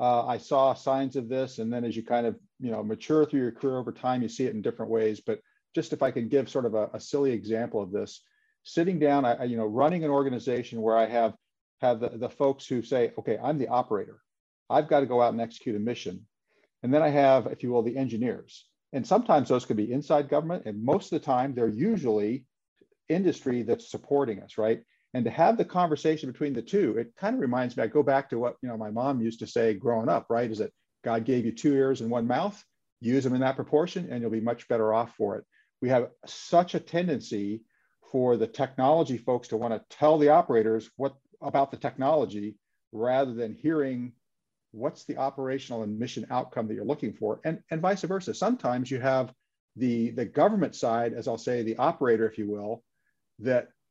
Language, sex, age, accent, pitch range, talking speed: English, male, 50-69, American, 115-145 Hz, 225 wpm